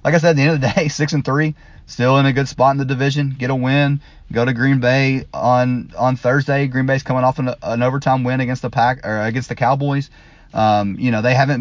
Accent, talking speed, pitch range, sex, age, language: American, 260 wpm, 95-125 Hz, male, 30-49, English